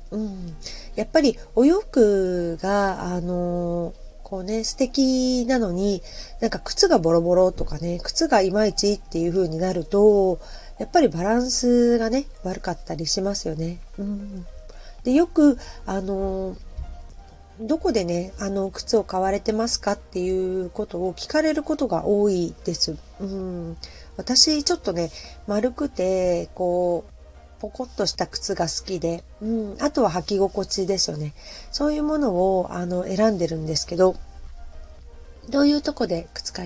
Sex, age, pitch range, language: female, 40-59, 175-220 Hz, Japanese